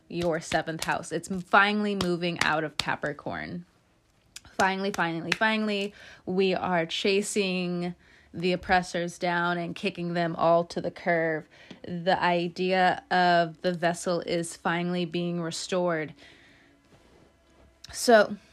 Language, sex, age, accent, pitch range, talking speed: English, female, 20-39, American, 170-205 Hz, 115 wpm